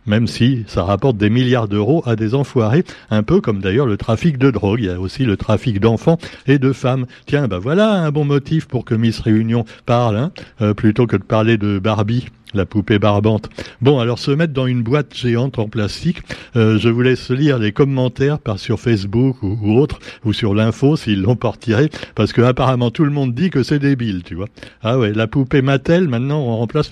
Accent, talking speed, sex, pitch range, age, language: French, 225 wpm, male, 110-150 Hz, 60-79, French